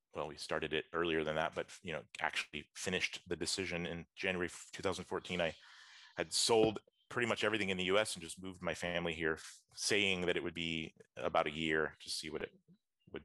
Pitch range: 80-95 Hz